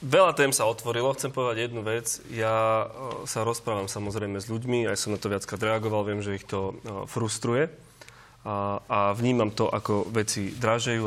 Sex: male